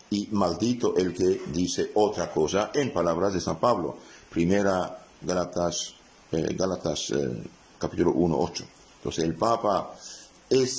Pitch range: 100-155 Hz